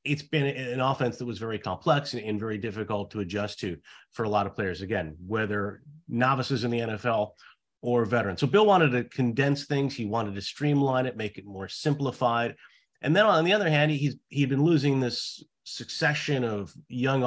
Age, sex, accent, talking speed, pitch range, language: 30-49, male, American, 195 wpm, 100-125 Hz, English